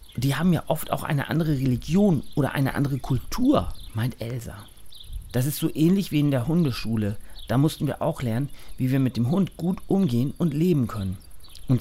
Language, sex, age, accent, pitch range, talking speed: German, male, 40-59, German, 100-155 Hz, 195 wpm